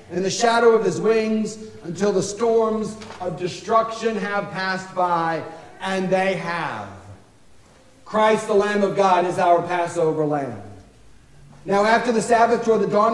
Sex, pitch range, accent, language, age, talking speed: male, 190-240 Hz, American, English, 50-69, 150 wpm